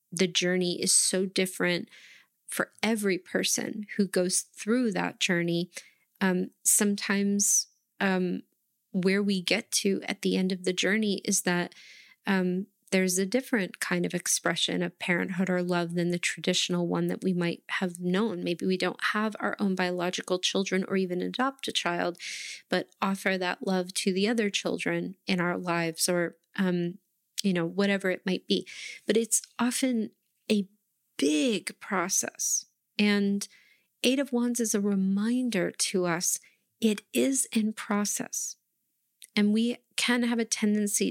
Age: 20-39